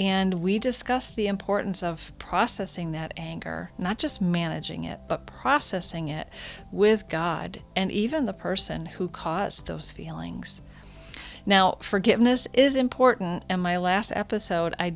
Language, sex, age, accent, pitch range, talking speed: English, female, 40-59, American, 170-205 Hz, 140 wpm